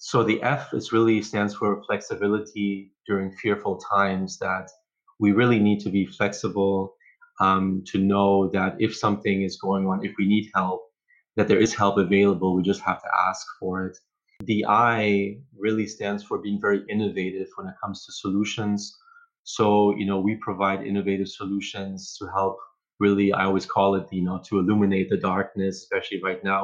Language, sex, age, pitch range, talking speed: English, male, 30-49, 95-105 Hz, 180 wpm